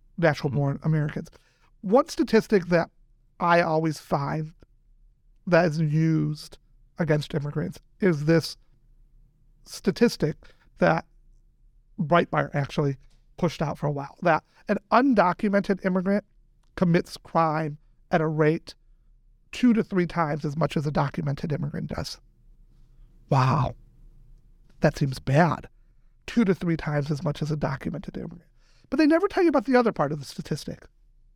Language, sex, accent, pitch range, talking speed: English, male, American, 150-220 Hz, 135 wpm